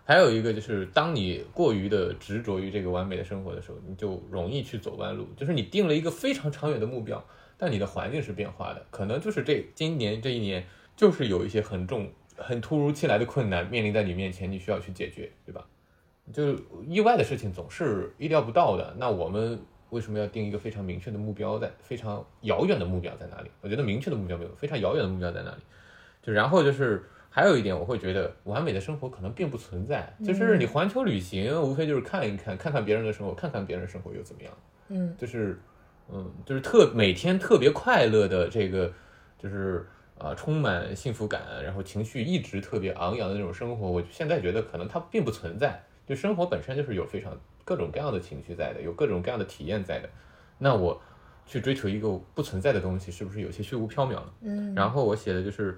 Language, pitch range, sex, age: Chinese, 95-140 Hz, male, 20-39